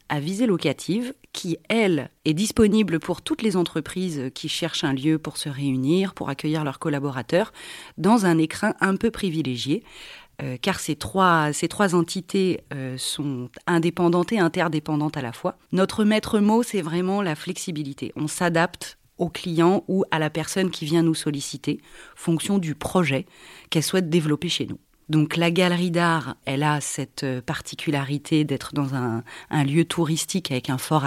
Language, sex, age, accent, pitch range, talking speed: French, female, 30-49, French, 150-180 Hz, 170 wpm